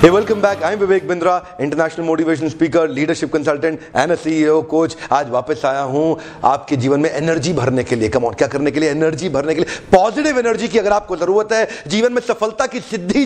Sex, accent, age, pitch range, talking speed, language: male, native, 40-59, 130-165 Hz, 215 wpm, Hindi